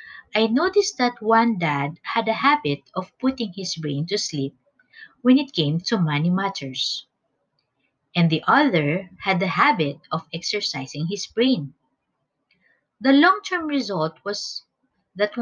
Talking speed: 135 wpm